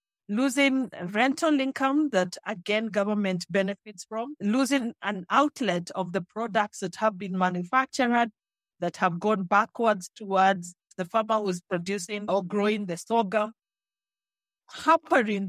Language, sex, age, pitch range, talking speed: English, female, 50-69, 185-220 Hz, 130 wpm